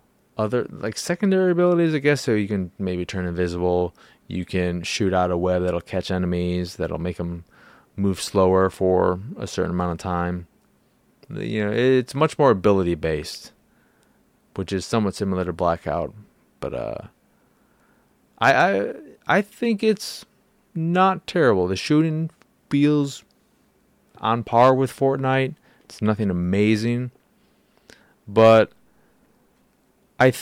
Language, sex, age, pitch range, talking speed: English, male, 20-39, 90-120 Hz, 130 wpm